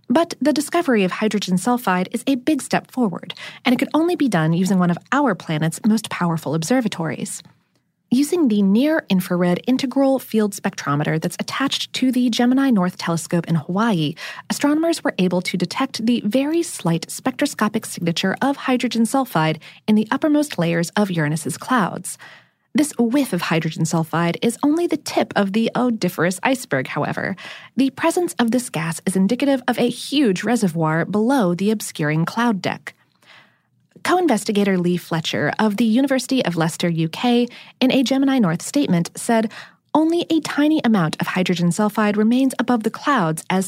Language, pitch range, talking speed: English, 175-260 Hz, 160 wpm